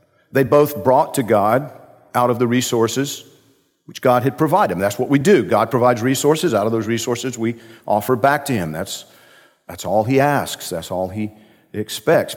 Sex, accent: male, American